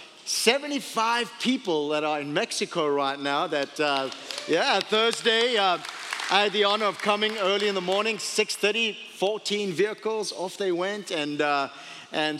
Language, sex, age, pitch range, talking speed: English, male, 40-59, 170-220 Hz, 150 wpm